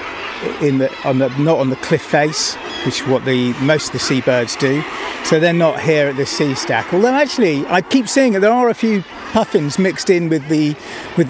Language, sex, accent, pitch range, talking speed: English, male, British, 135-180 Hz, 220 wpm